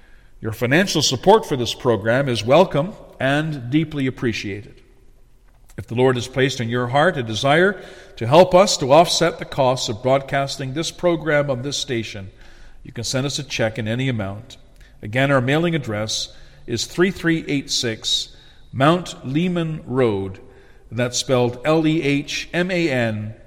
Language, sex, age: English, male, 50-69